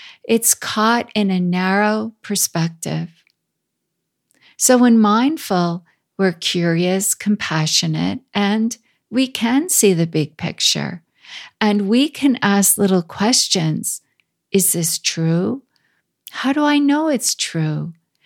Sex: female